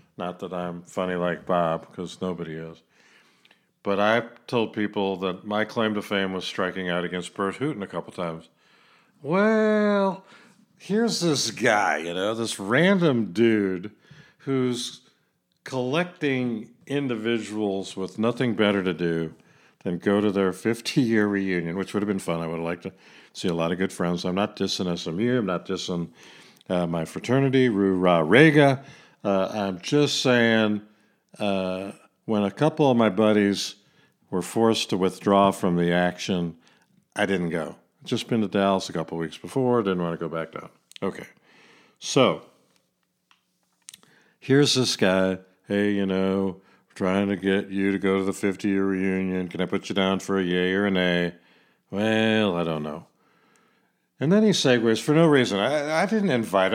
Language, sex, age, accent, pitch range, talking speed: English, male, 50-69, American, 90-120 Hz, 165 wpm